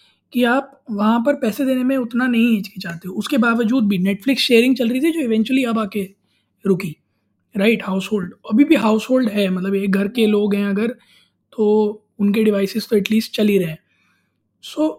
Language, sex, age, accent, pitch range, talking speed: Hindi, male, 20-39, native, 185-225 Hz, 195 wpm